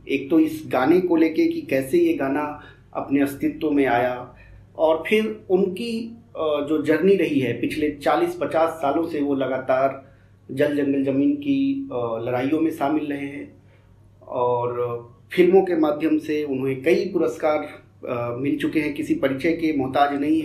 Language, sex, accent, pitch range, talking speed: Hindi, male, native, 120-150 Hz, 155 wpm